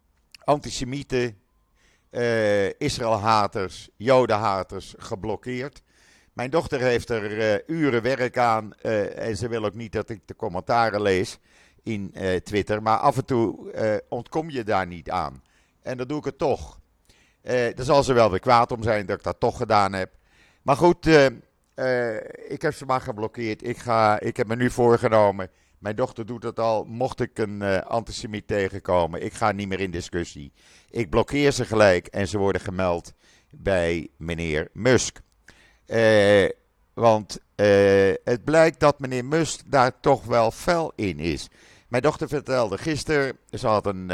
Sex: male